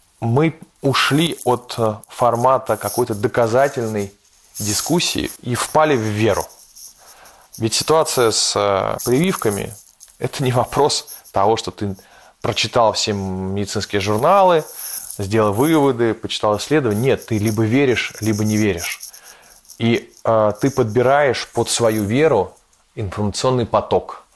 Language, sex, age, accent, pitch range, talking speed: Russian, male, 20-39, native, 100-135 Hz, 110 wpm